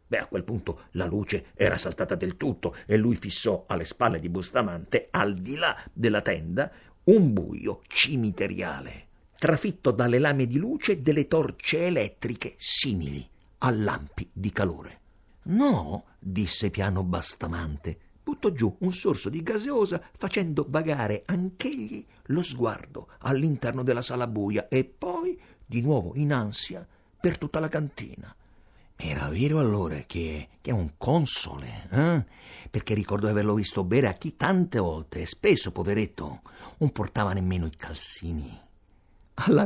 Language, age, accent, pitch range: Italian, 50-69, native, 95-160 Hz